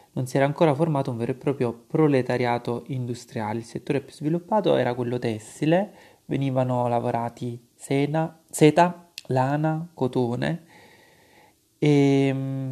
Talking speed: 115 wpm